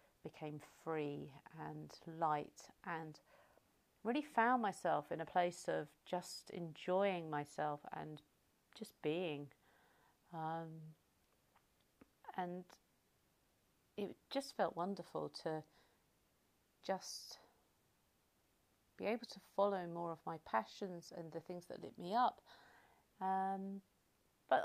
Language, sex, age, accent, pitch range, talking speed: English, female, 40-59, British, 160-200 Hz, 100 wpm